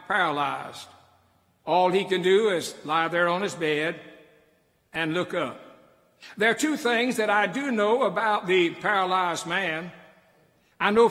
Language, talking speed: English, 150 wpm